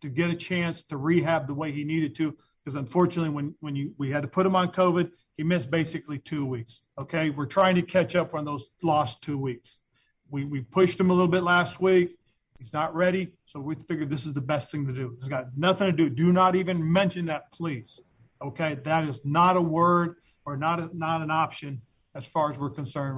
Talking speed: 230 wpm